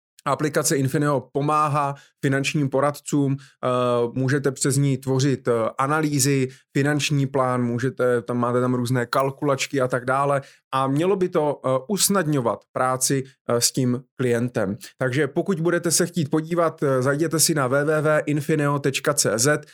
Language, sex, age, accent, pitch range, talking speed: Czech, male, 20-39, native, 130-150 Hz, 120 wpm